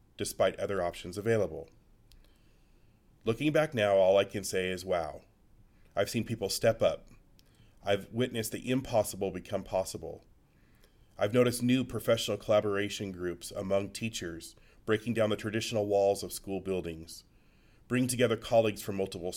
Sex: male